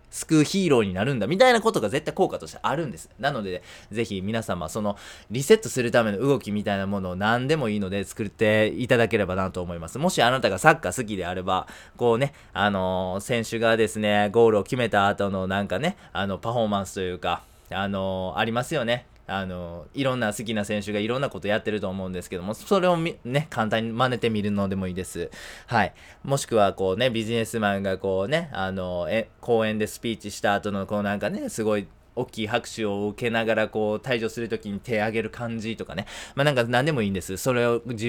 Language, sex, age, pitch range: Japanese, male, 20-39, 100-120 Hz